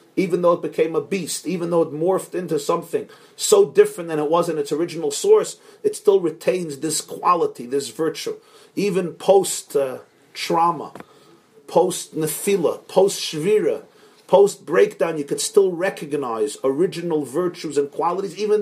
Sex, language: male, English